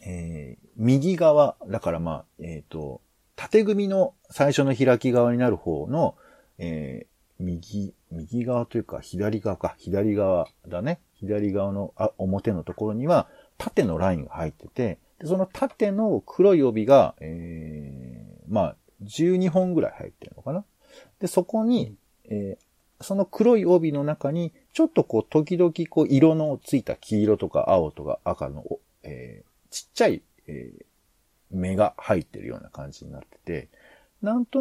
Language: Japanese